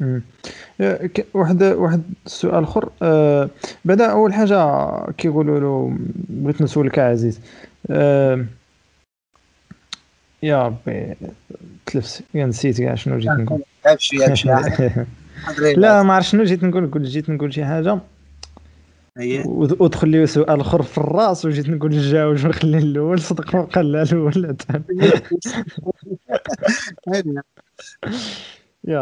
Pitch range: 125-160 Hz